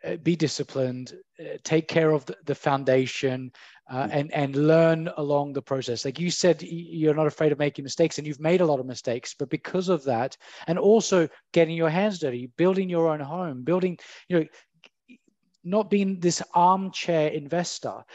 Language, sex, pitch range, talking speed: English, male, 145-180 Hz, 170 wpm